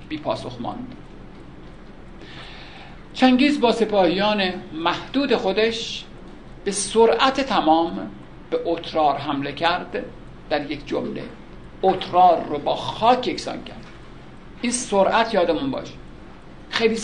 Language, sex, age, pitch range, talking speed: Persian, male, 60-79, 160-225 Hz, 100 wpm